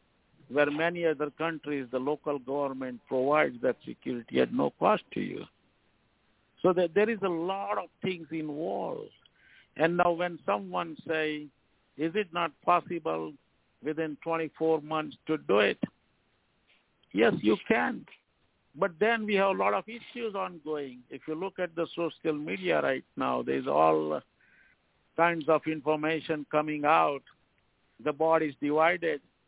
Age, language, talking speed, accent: 60-79, English, 145 wpm, Indian